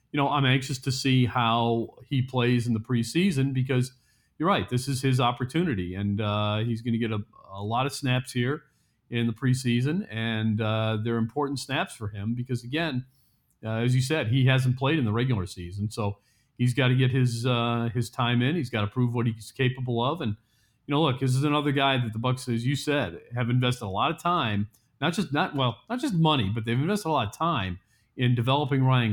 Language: English